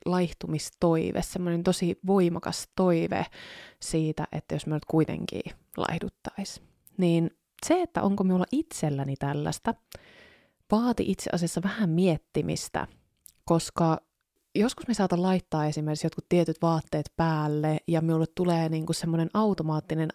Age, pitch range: 20-39, 160-205 Hz